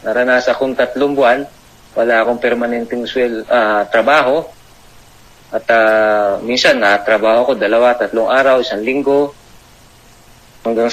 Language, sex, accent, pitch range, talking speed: Filipino, male, native, 115-135 Hz, 120 wpm